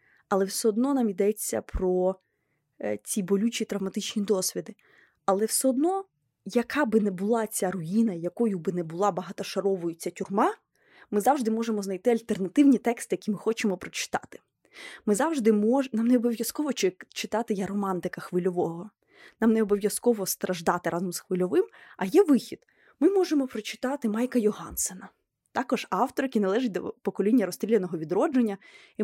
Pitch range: 195-240 Hz